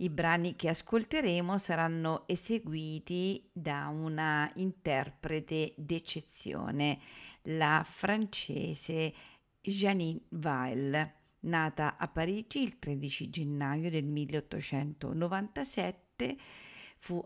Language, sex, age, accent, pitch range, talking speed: Italian, female, 50-69, native, 155-180 Hz, 80 wpm